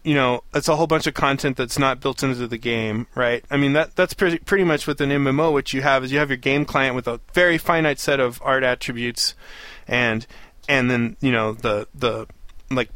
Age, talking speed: 20-39, 230 wpm